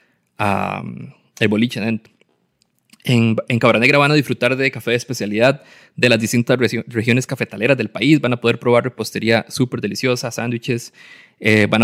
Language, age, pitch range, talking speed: Spanish, 20-39, 110-145 Hz, 160 wpm